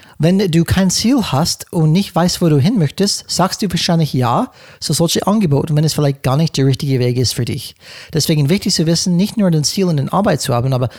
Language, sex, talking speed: German, male, 245 wpm